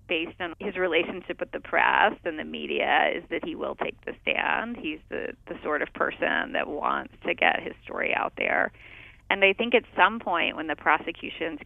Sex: female